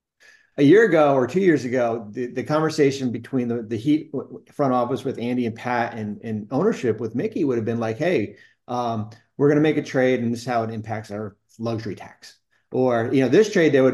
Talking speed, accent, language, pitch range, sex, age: 225 wpm, American, English, 115-145 Hz, male, 30-49